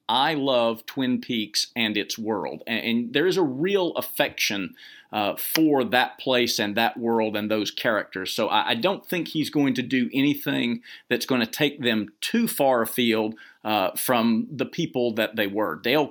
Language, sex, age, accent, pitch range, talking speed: English, male, 50-69, American, 110-135 Hz, 185 wpm